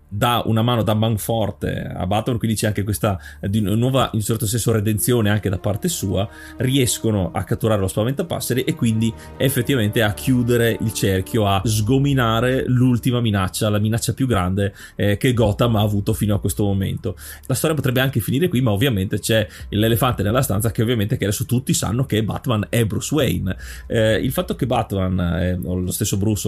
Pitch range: 95-120 Hz